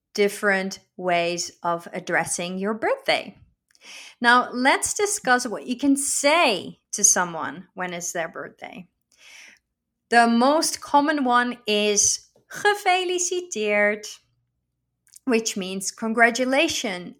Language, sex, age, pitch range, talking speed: Dutch, female, 30-49, 190-250 Hz, 100 wpm